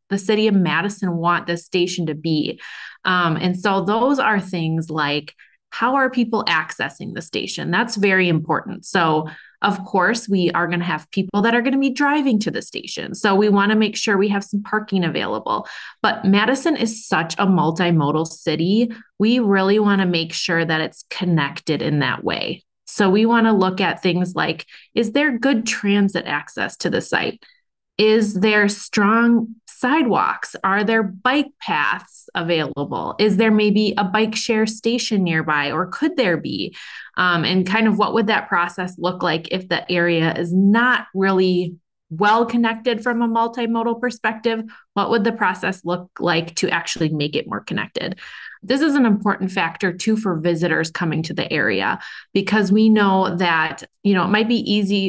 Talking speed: 180 wpm